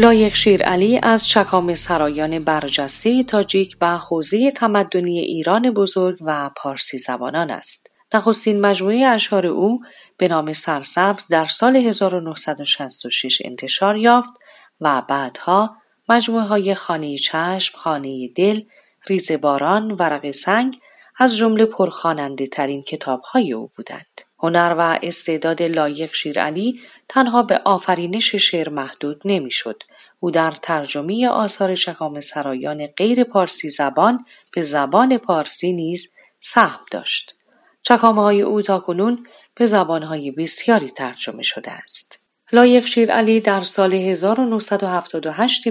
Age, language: 30-49, Persian